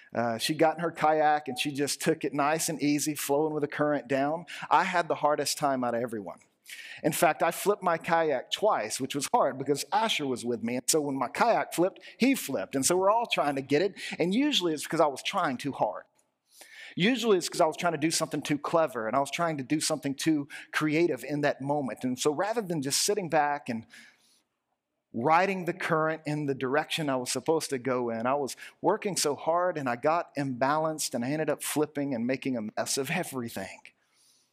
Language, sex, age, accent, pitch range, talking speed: English, male, 40-59, American, 135-165 Hz, 225 wpm